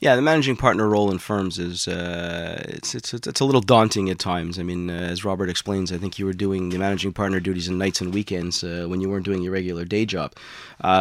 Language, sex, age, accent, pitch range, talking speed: English, male, 30-49, American, 95-110 Hz, 250 wpm